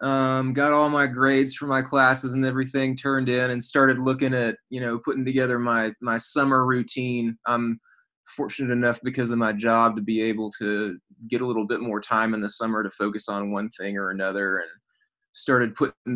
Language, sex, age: English, male, 20-39